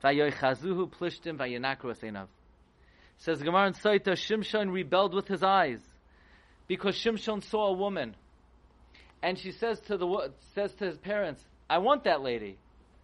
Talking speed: 135 wpm